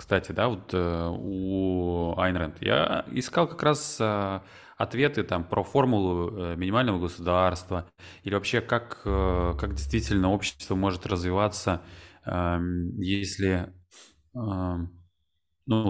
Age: 20-39